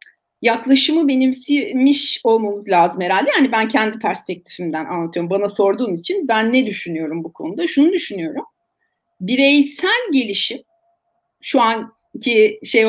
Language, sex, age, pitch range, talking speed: Turkish, female, 30-49, 205-290 Hz, 115 wpm